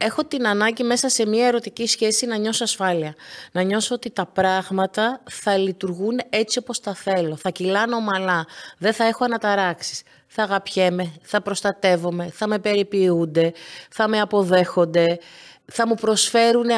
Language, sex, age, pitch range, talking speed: Greek, female, 30-49, 180-240 Hz, 150 wpm